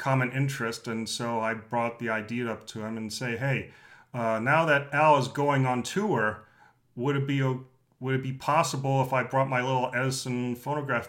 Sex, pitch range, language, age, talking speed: male, 115-140 Hz, English, 40-59, 195 wpm